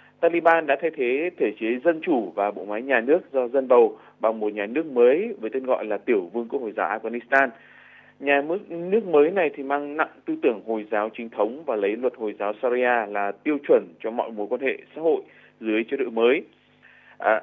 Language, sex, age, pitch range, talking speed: Vietnamese, male, 20-39, 125-205 Hz, 225 wpm